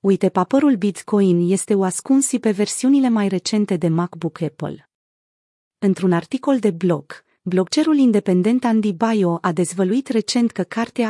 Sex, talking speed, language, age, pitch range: female, 140 wpm, Romanian, 30-49, 180-230 Hz